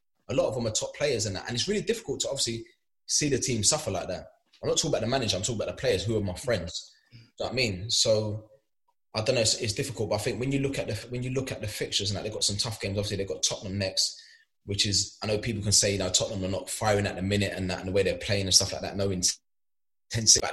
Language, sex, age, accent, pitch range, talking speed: English, male, 20-39, British, 100-120 Hz, 310 wpm